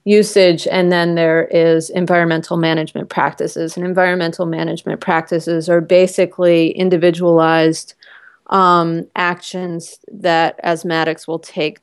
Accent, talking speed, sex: American, 105 wpm, female